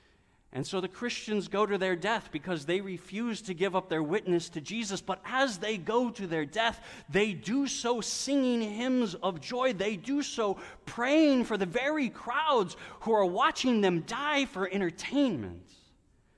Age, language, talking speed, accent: 30-49, English, 170 wpm, American